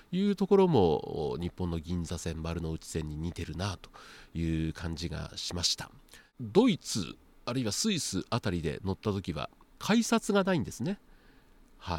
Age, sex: 40-59, male